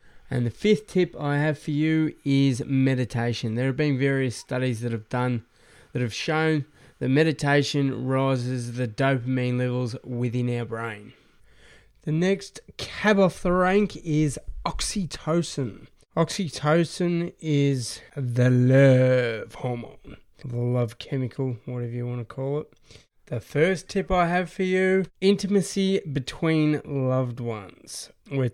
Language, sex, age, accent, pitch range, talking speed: English, male, 20-39, Australian, 125-160 Hz, 130 wpm